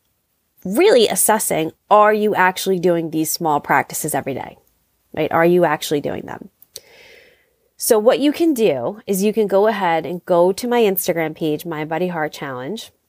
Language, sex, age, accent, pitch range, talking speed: English, female, 30-49, American, 165-225 Hz, 170 wpm